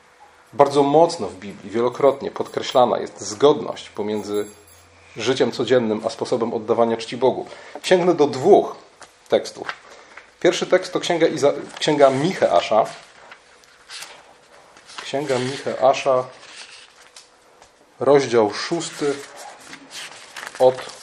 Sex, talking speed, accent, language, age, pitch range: male, 90 wpm, native, Polish, 30-49, 120-160 Hz